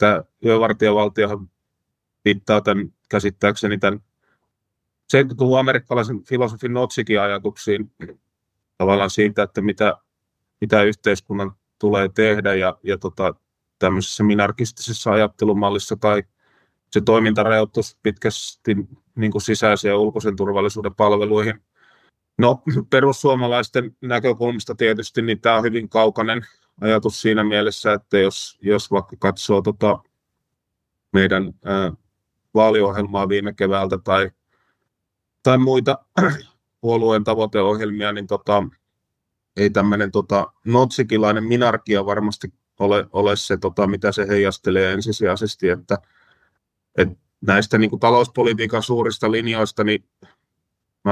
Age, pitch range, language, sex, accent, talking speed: 30-49, 100-115 Hz, Finnish, male, native, 105 wpm